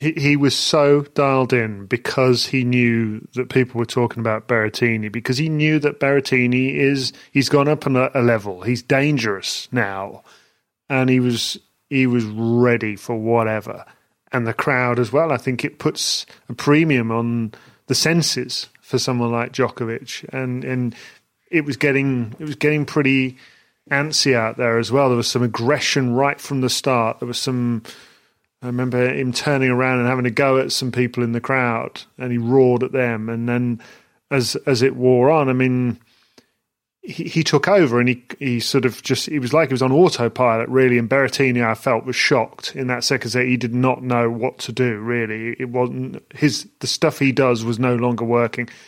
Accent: British